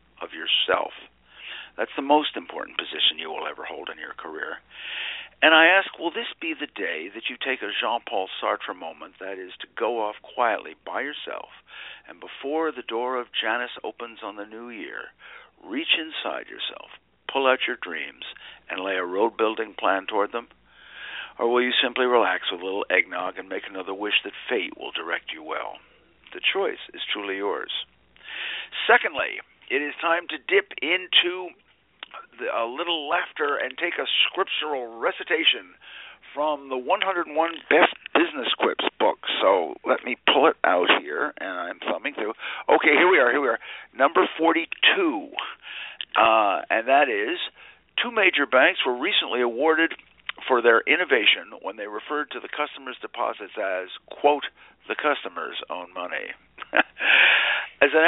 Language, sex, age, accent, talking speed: English, male, 60-79, American, 160 wpm